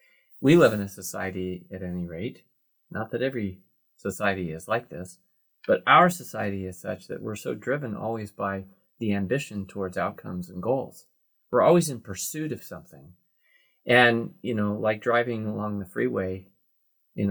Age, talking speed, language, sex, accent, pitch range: 30-49, 165 wpm, English, male, American, 90-110 Hz